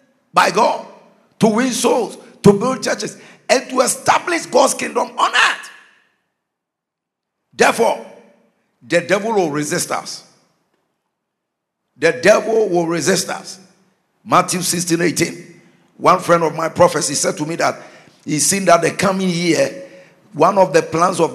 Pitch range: 170-225 Hz